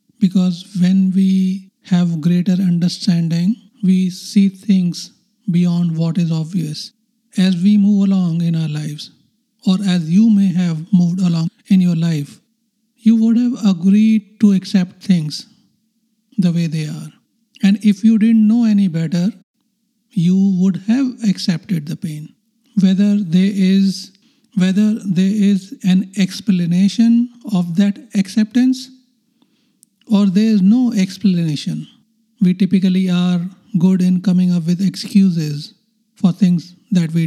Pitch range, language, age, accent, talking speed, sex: 180-220 Hz, English, 50-69, Indian, 135 wpm, male